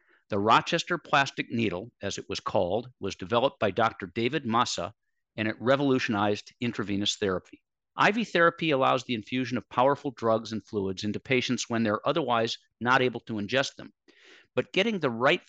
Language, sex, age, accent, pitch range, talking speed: English, male, 50-69, American, 105-140 Hz, 165 wpm